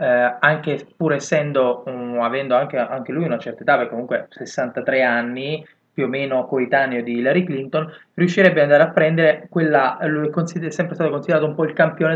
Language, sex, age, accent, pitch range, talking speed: Italian, male, 20-39, native, 125-160 Hz, 190 wpm